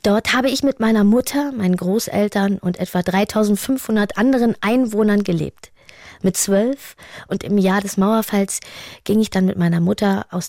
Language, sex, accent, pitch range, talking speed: German, female, German, 180-210 Hz, 160 wpm